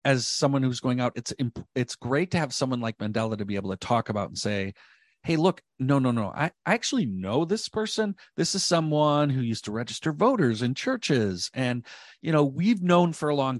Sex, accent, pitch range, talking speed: male, American, 110-145 Hz, 220 wpm